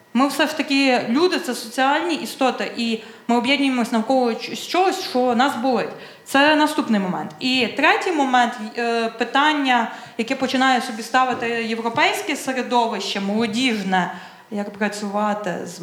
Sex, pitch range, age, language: female, 220-260 Hz, 20-39, Ukrainian